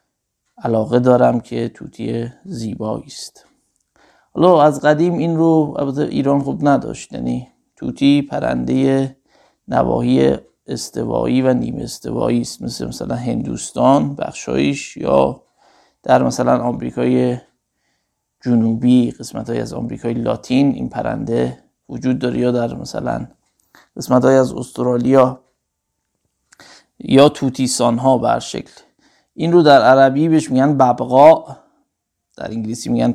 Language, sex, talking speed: Persian, male, 115 wpm